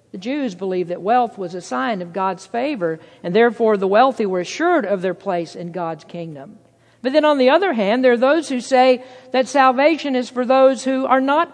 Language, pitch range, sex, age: English, 220-280 Hz, female, 50-69